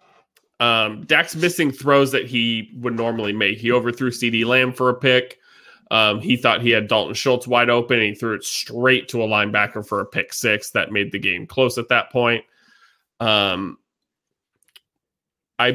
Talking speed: 180 wpm